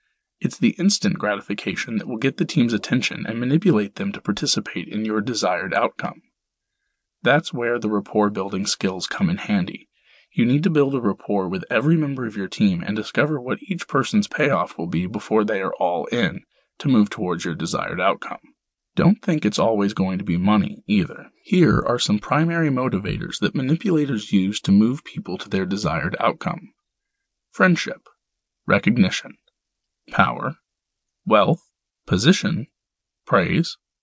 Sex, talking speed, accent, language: male, 155 wpm, American, English